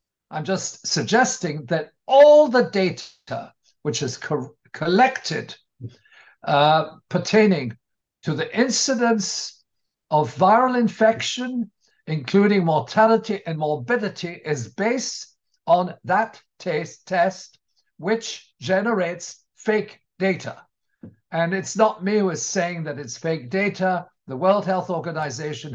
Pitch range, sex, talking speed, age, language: 150-205 Hz, male, 105 wpm, 60-79, English